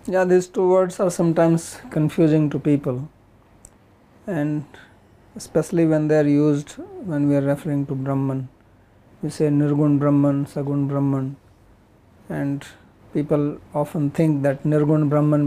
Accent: Indian